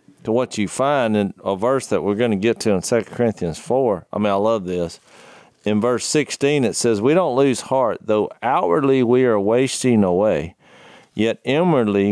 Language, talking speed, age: English, 195 wpm, 40-59